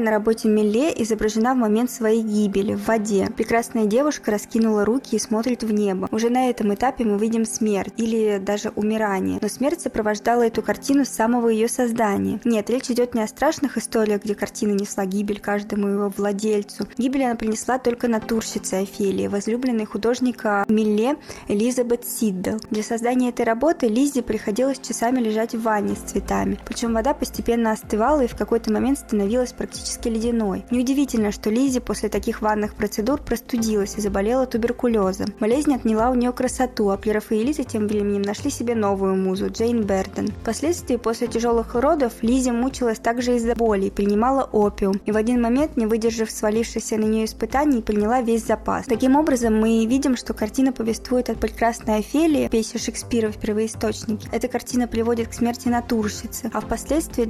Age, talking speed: 20-39, 165 wpm